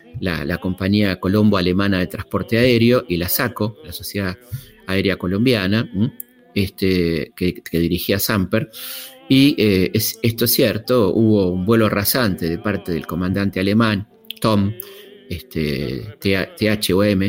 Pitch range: 95-115 Hz